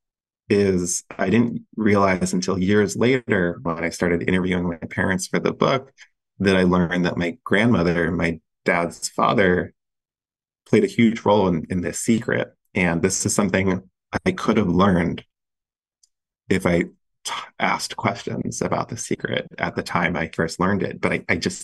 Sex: male